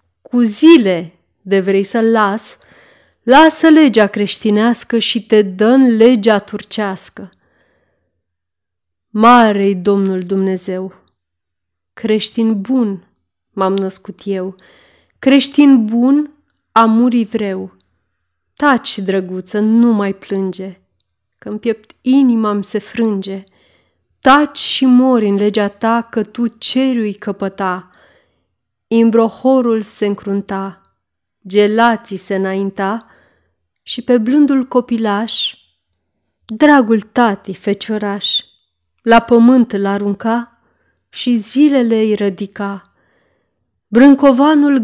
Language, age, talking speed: Romanian, 30-49, 90 wpm